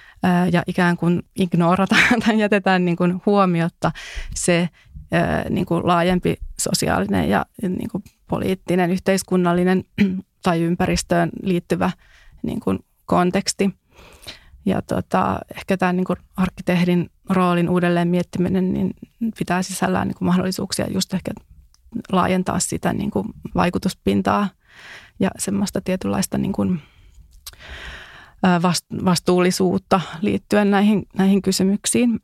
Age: 30-49